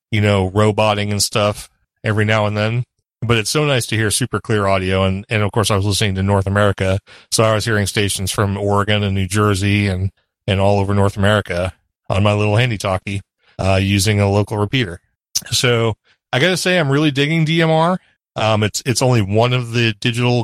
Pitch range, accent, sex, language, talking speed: 105-120 Hz, American, male, English, 205 wpm